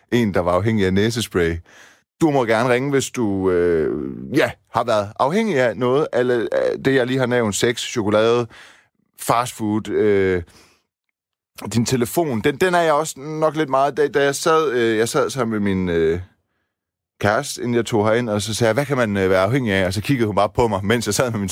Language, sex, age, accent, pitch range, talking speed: Danish, male, 30-49, native, 95-130 Hz, 215 wpm